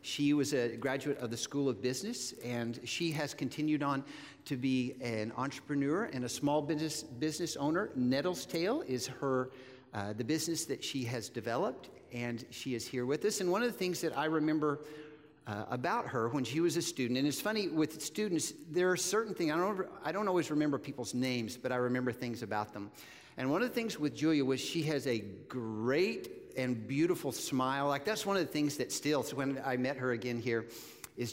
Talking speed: 210 wpm